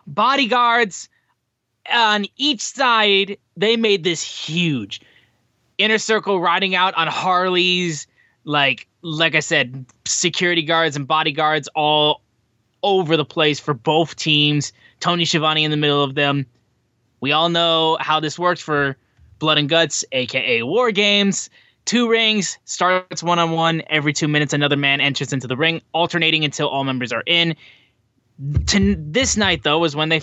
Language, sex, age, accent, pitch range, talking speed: English, male, 20-39, American, 135-175 Hz, 150 wpm